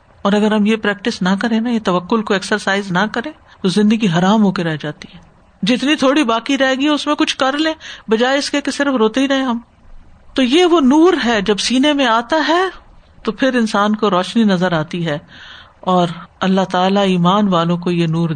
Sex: female